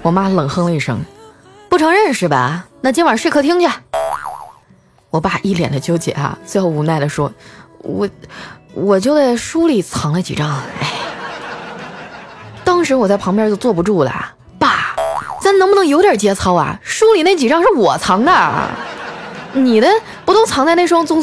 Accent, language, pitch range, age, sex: native, Chinese, 155-235 Hz, 20-39, female